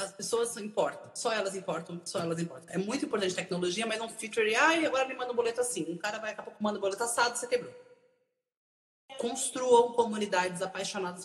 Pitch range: 170-230 Hz